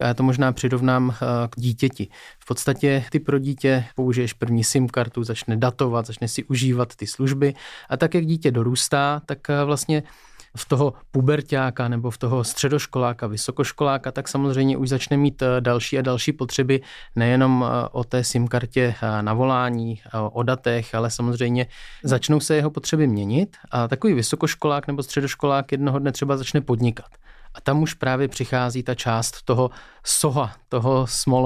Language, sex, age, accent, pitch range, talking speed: Czech, male, 20-39, native, 115-135 Hz, 155 wpm